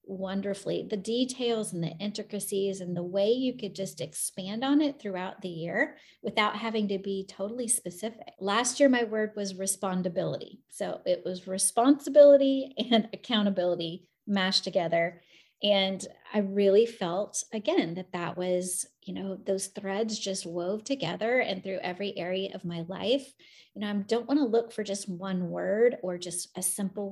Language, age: English, 30-49